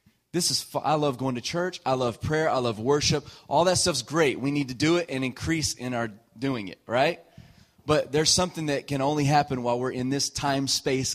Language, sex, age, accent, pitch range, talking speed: English, male, 30-49, American, 115-140 Hz, 230 wpm